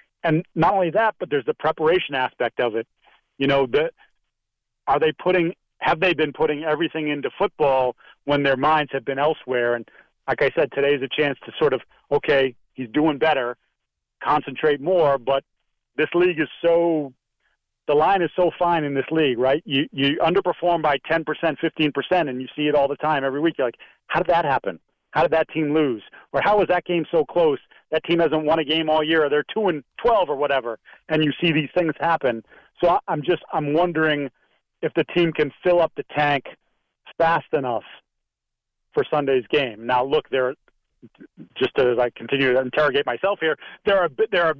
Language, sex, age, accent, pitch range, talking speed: English, male, 40-59, American, 135-165 Hz, 200 wpm